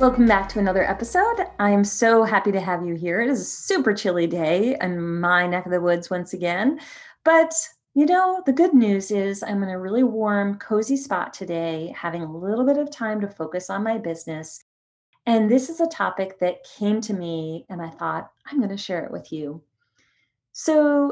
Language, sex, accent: English, female, American